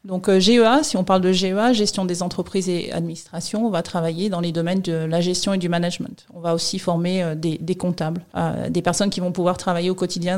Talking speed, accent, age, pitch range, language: 225 wpm, French, 40-59, 180-205 Hz, French